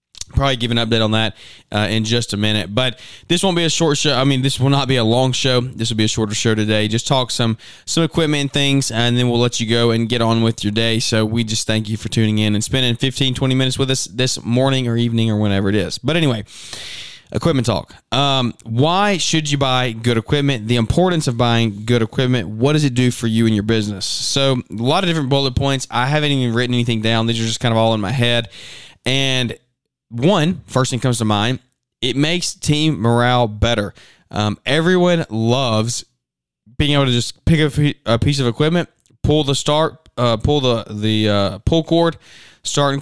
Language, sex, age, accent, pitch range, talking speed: English, male, 20-39, American, 110-135 Hz, 225 wpm